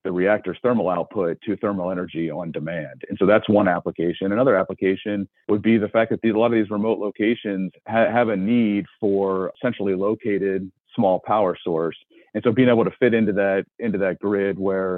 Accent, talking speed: American, 200 wpm